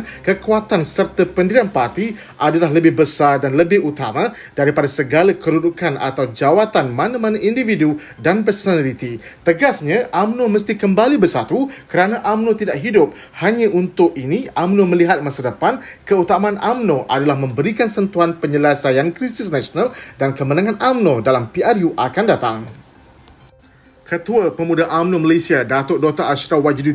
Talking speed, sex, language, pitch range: 130 wpm, male, Malay, 145-210 Hz